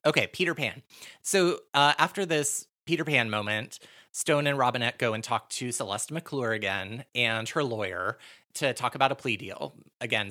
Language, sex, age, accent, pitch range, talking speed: English, male, 30-49, American, 110-140 Hz, 175 wpm